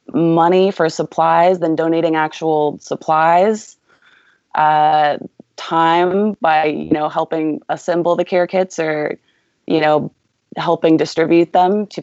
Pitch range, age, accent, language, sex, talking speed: 160-180 Hz, 20-39, American, English, female, 120 wpm